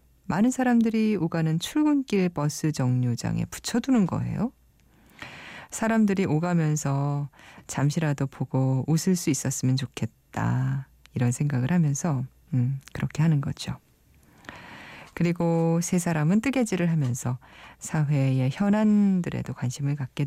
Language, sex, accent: Korean, female, native